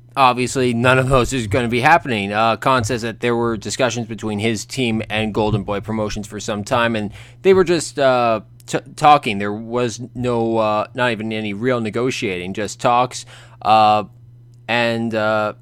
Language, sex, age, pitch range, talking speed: English, male, 20-39, 115-130 Hz, 175 wpm